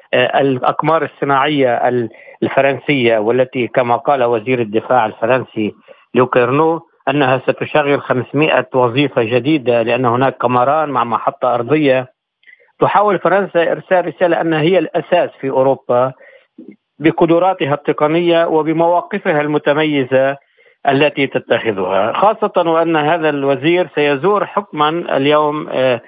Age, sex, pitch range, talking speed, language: 50-69, male, 130-165 Hz, 100 wpm, Arabic